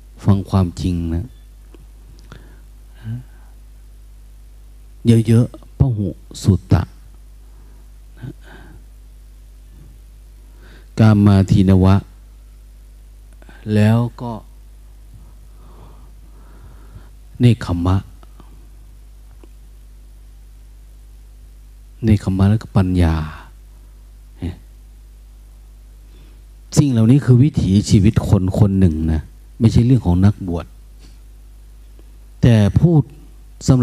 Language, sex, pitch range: Thai, male, 90-115 Hz